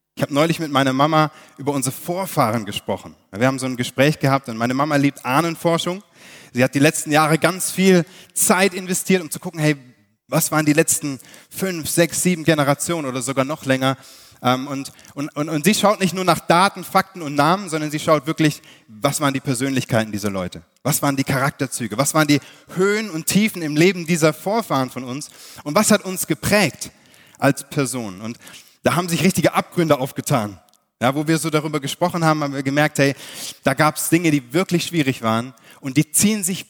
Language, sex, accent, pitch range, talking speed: German, male, German, 135-175 Hz, 200 wpm